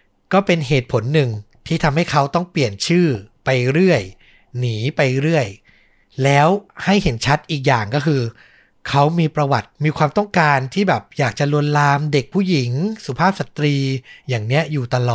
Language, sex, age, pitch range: Thai, male, 60-79, 135-170 Hz